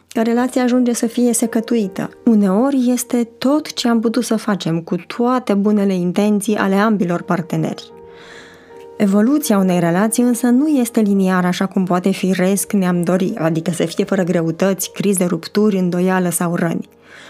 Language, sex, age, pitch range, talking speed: Romanian, female, 20-39, 185-240 Hz, 155 wpm